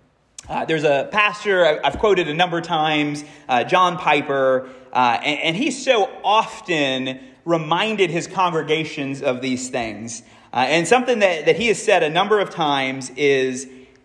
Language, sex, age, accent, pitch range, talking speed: English, male, 30-49, American, 145-220 Hz, 160 wpm